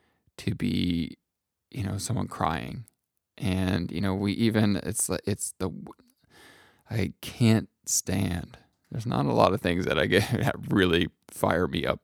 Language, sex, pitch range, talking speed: English, male, 100-120 Hz, 160 wpm